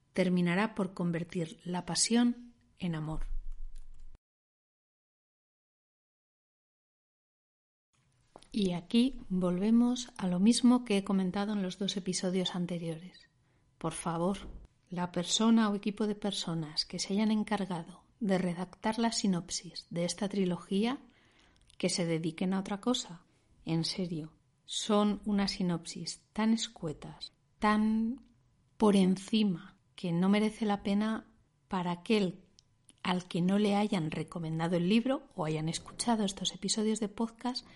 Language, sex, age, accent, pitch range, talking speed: Spanish, female, 40-59, Spanish, 170-220 Hz, 125 wpm